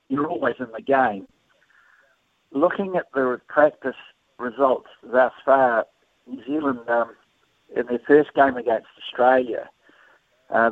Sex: male